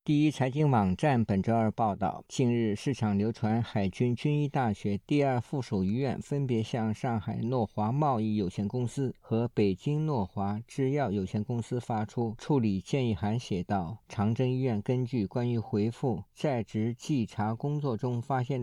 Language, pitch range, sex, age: Chinese, 105-135 Hz, male, 50-69